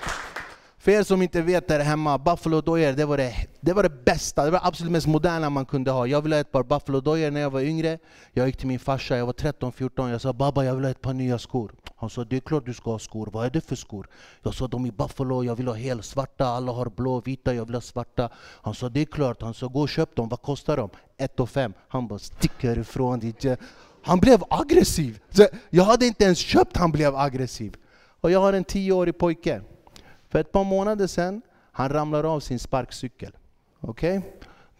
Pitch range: 125-155 Hz